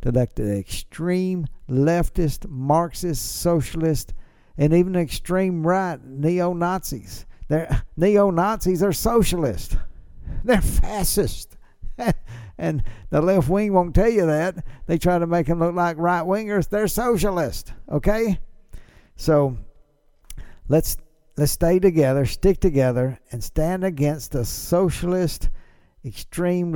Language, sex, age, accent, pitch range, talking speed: English, male, 60-79, American, 130-175 Hz, 110 wpm